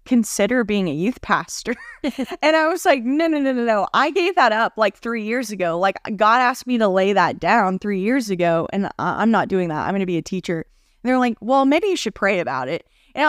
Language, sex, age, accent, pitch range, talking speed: English, female, 10-29, American, 185-245 Hz, 255 wpm